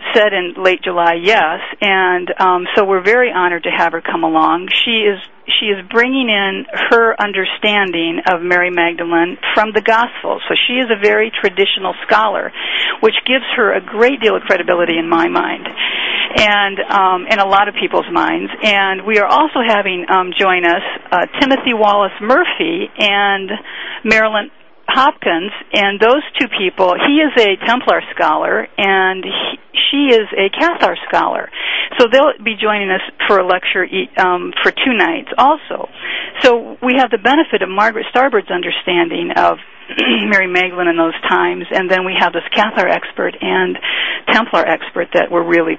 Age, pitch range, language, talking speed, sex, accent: 50-69, 185-235 Hz, English, 170 wpm, female, American